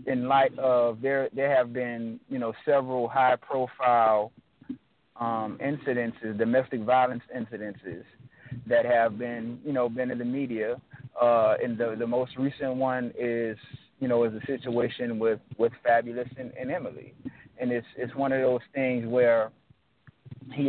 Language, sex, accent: English, male, American